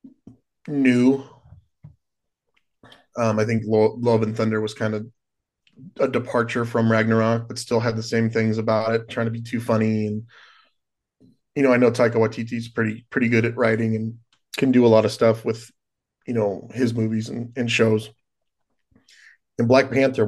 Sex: male